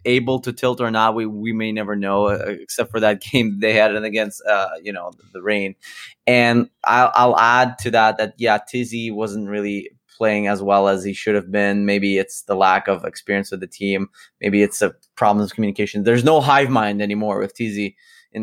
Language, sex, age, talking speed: English, male, 20-39, 215 wpm